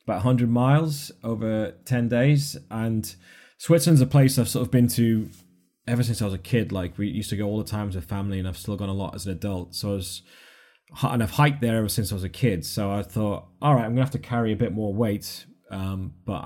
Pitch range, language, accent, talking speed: 95-120 Hz, English, British, 255 wpm